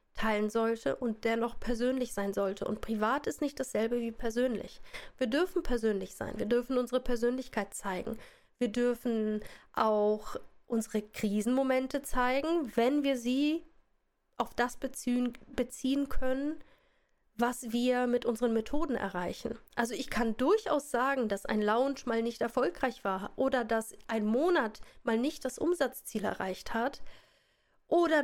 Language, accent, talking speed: German, German, 140 wpm